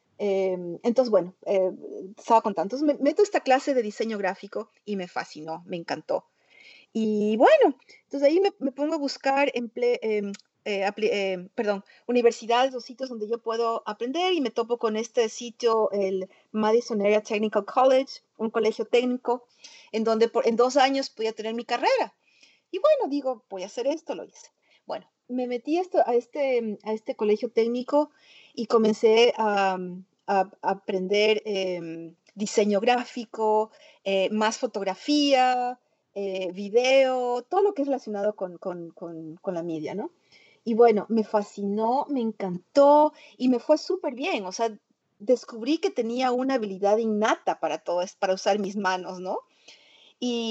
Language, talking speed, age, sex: English, 165 wpm, 40-59, female